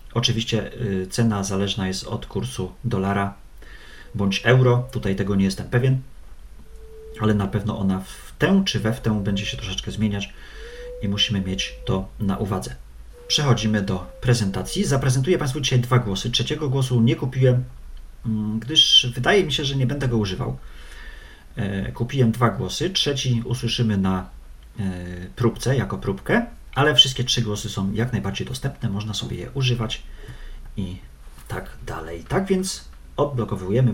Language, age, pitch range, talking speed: Polish, 40-59, 95-125 Hz, 145 wpm